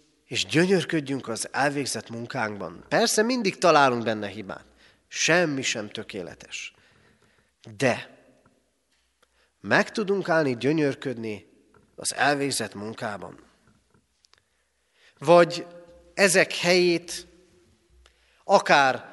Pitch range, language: 125-175 Hz, Hungarian